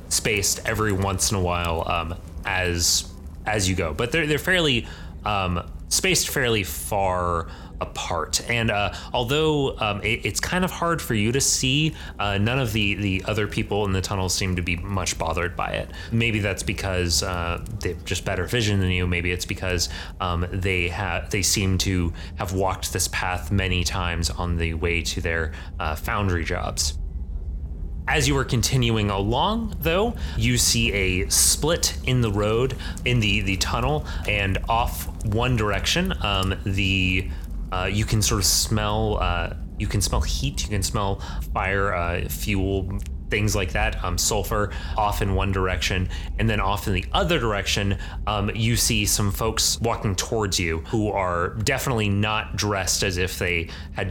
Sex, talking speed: male, 175 wpm